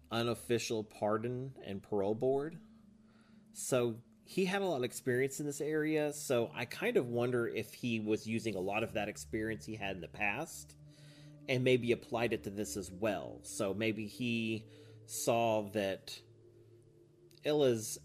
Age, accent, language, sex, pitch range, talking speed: 30-49, American, English, male, 95-120 Hz, 160 wpm